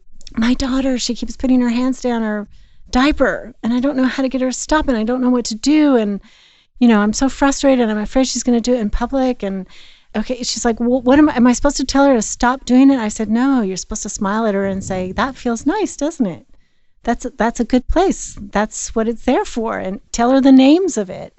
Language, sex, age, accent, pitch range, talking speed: English, female, 40-59, American, 190-250 Hz, 265 wpm